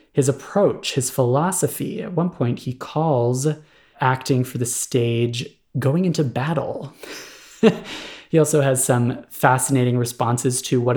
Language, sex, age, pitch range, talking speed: English, male, 20-39, 120-155 Hz, 130 wpm